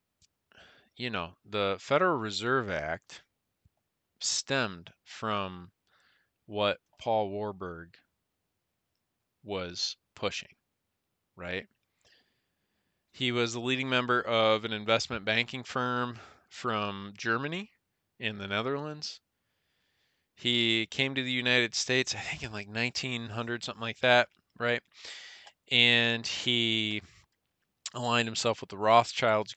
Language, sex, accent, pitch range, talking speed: English, male, American, 100-120 Hz, 105 wpm